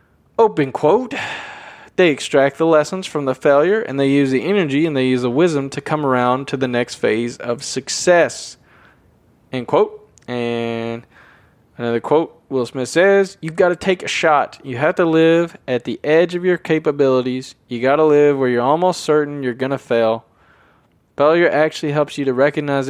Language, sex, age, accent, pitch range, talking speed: English, male, 20-39, American, 125-160 Hz, 185 wpm